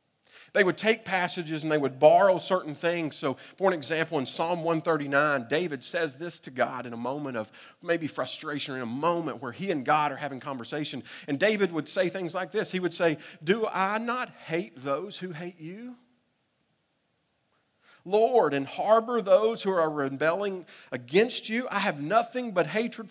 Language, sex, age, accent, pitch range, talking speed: English, male, 40-59, American, 155-215 Hz, 185 wpm